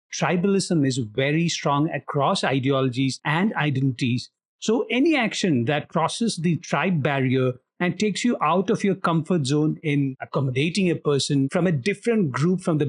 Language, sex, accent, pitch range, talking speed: English, male, Indian, 140-185 Hz, 160 wpm